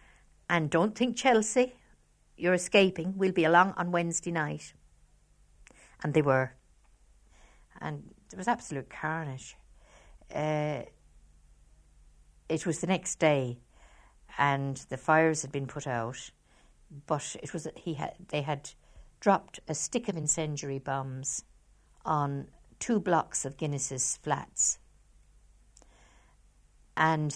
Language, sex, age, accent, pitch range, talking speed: English, female, 60-79, British, 130-160 Hz, 120 wpm